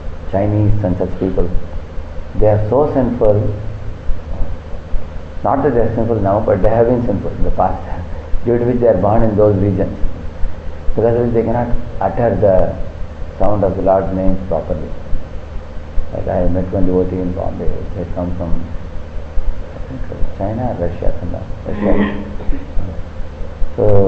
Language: English